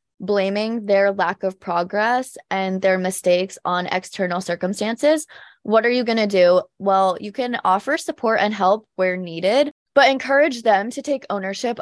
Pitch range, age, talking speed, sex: 180-225 Hz, 20-39, 160 wpm, female